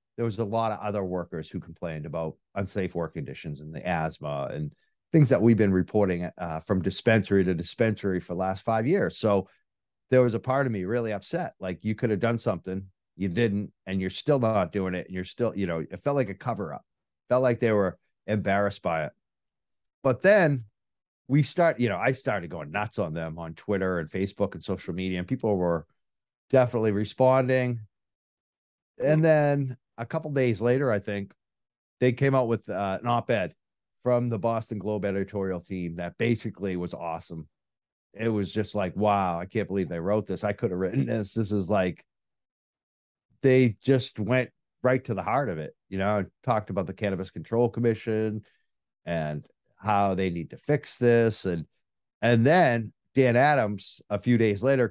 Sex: male